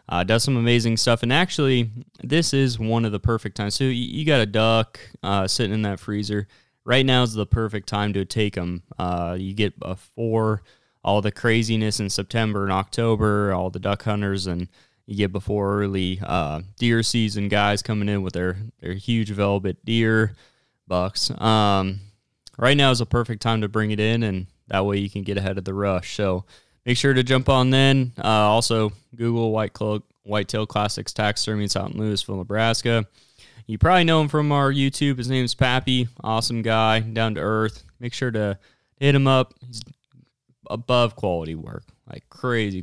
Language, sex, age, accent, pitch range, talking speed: English, male, 20-39, American, 100-120 Hz, 190 wpm